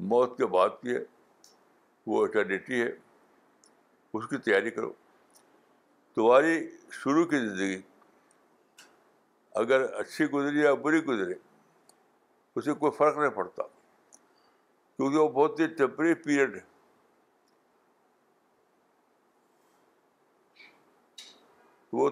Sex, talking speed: male, 95 wpm